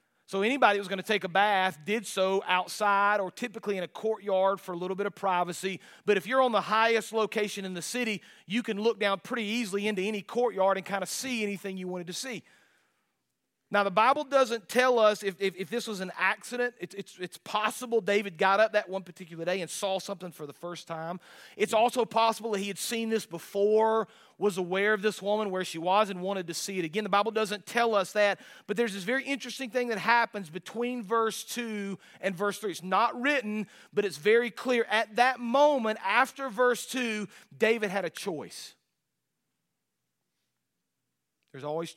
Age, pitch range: 40-59, 190-225 Hz